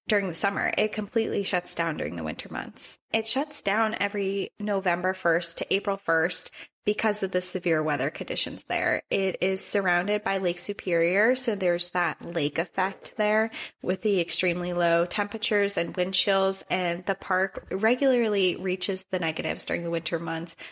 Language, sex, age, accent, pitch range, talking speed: English, female, 20-39, American, 175-215 Hz, 170 wpm